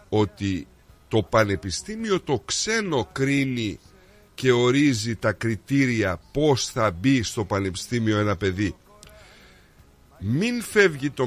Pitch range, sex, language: 100-135 Hz, male, Greek